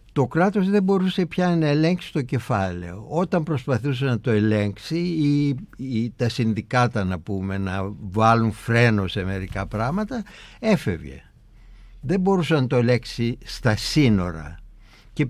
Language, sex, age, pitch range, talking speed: Greek, male, 60-79, 110-185 Hz, 135 wpm